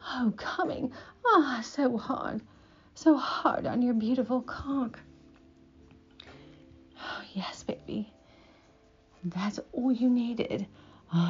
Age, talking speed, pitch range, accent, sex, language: 40-59, 105 wpm, 190-265 Hz, American, female, English